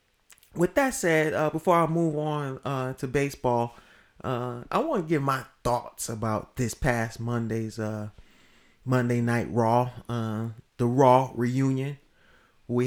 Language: English